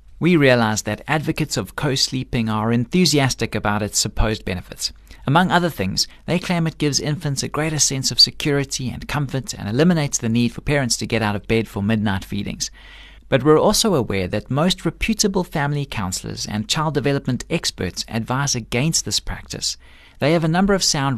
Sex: male